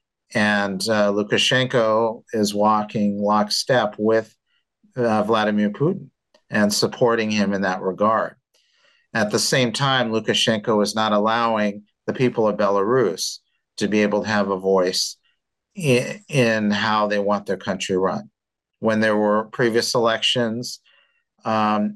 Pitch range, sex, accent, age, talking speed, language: 105-120 Hz, male, American, 50-69, 135 wpm, English